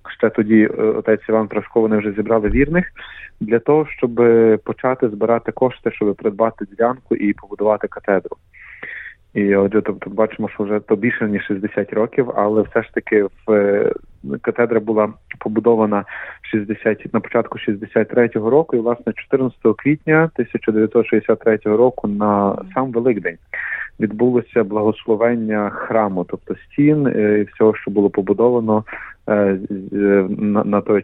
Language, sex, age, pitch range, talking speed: Ukrainian, male, 30-49, 100-115 Hz, 130 wpm